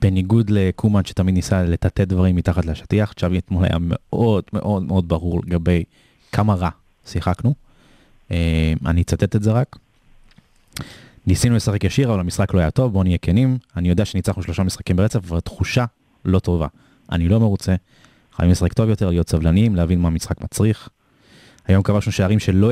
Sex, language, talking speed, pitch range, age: male, Hebrew, 165 wpm, 85-110 Hz, 20-39